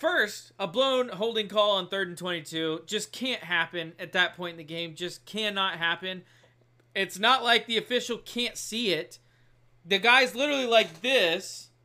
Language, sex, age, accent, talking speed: English, male, 20-39, American, 170 wpm